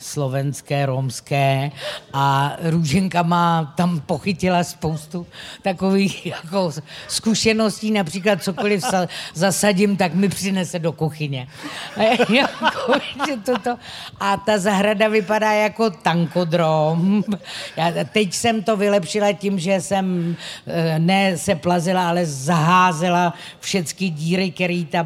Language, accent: Czech, native